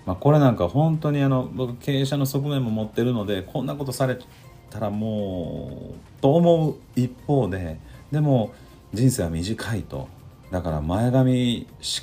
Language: Japanese